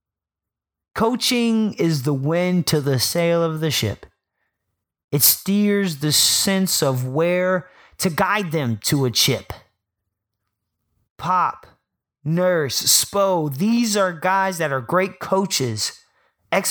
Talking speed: 120 wpm